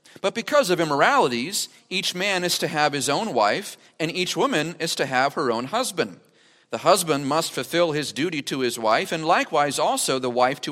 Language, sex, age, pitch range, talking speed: English, male, 40-59, 140-190 Hz, 200 wpm